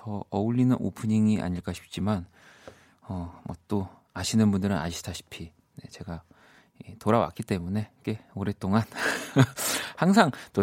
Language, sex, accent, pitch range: Korean, male, native, 95-125 Hz